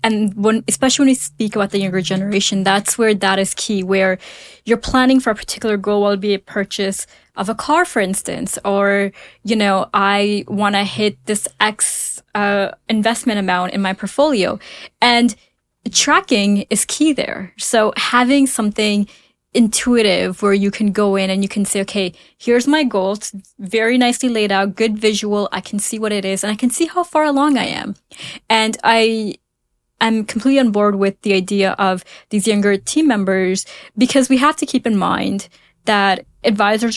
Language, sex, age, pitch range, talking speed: English, female, 20-39, 200-245 Hz, 180 wpm